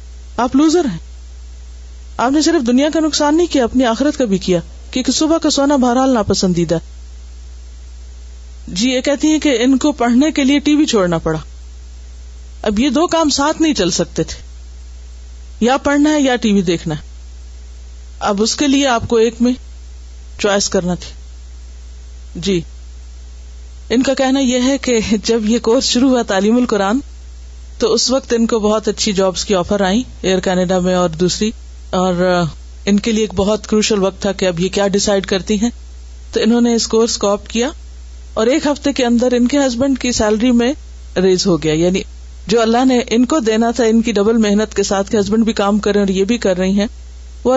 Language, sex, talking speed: Urdu, female, 195 wpm